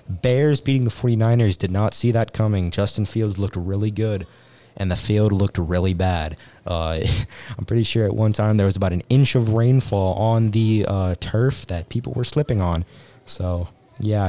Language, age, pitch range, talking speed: English, 20-39, 90-115 Hz, 190 wpm